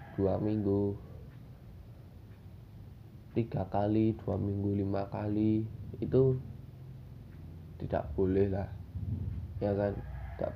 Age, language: 20-39, Indonesian